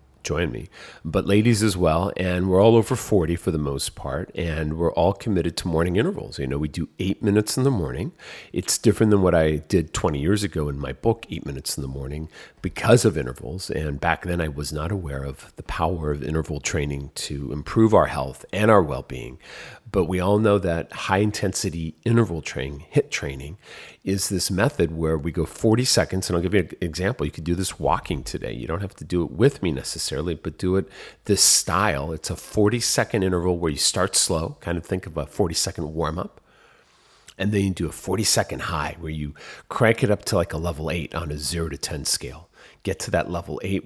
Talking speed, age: 225 wpm, 40-59